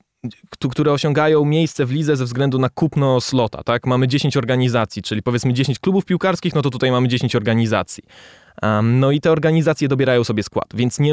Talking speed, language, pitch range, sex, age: 185 wpm, Polish, 115-145 Hz, male, 20-39